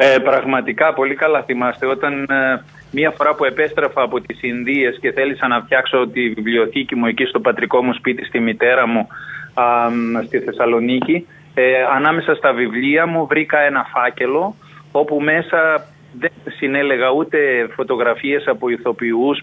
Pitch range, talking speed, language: 125-150 Hz, 150 wpm, Greek